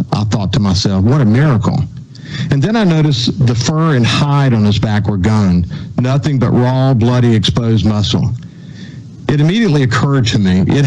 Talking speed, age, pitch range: 175 wpm, 50-69, 110-140 Hz